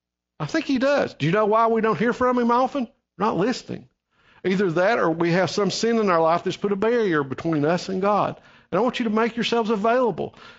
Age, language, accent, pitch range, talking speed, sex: 50-69, English, American, 175-235 Hz, 245 wpm, male